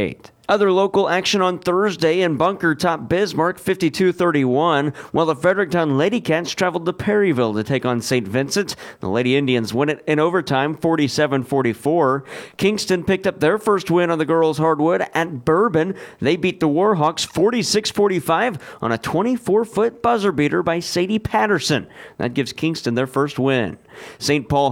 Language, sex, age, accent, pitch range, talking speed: English, male, 40-59, American, 135-185 Hz, 155 wpm